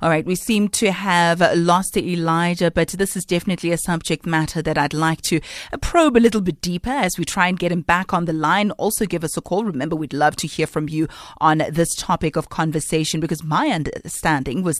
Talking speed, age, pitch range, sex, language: 225 wpm, 30-49, 160-200 Hz, female, English